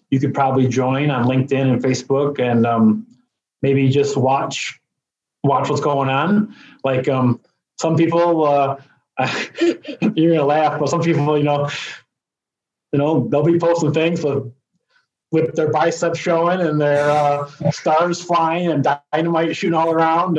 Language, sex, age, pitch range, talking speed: English, male, 20-39, 145-170 Hz, 150 wpm